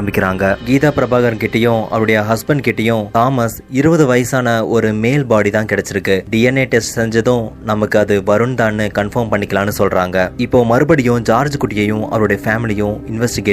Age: 20-39